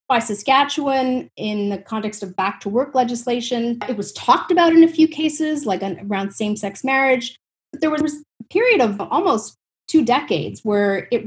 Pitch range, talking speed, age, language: 200-255 Hz, 165 wpm, 30-49, English